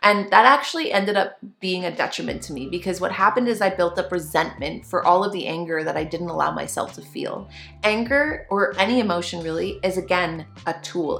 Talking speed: 210 wpm